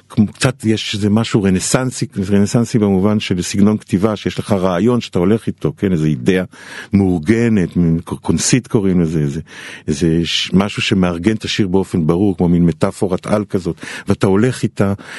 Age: 50-69